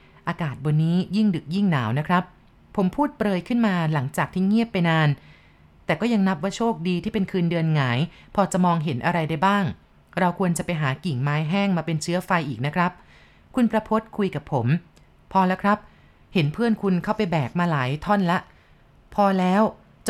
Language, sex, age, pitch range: Thai, female, 30-49, 155-200 Hz